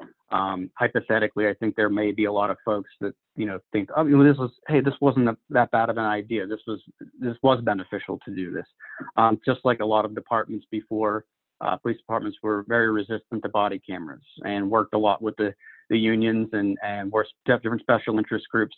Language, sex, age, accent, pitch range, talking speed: English, male, 40-59, American, 105-115 Hz, 210 wpm